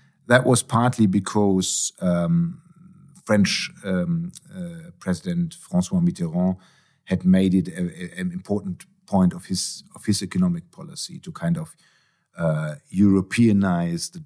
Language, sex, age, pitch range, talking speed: Hungarian, male, 50-69, 115-175 Hz, 130 wpm